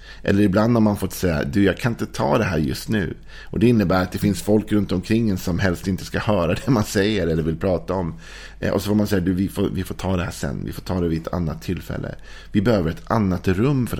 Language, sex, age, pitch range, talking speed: Swedish, male, 50-69, 80-100 Hz, 275 wpm